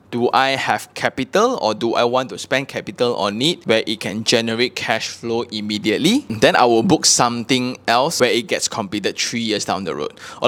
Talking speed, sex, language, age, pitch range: 205 wpm, male, English, 20-39, 110-135 Hz